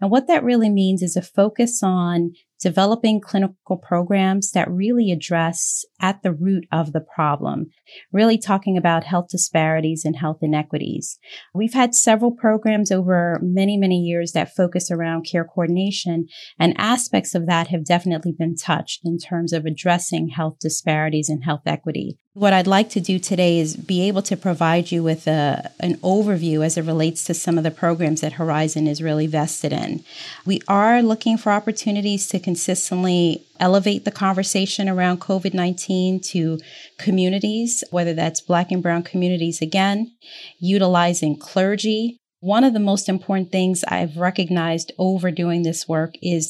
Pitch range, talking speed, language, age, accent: 165-195 Hz, 160 wpm, English, 30-49, American